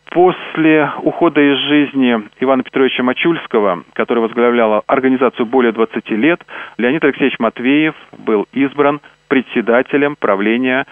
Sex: male